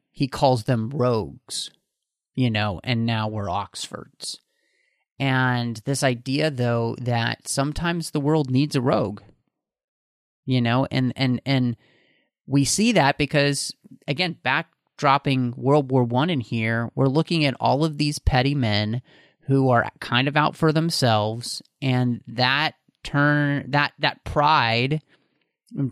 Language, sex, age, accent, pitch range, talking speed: English, male, 30-49, American, 120-145 Hz, 135 wpm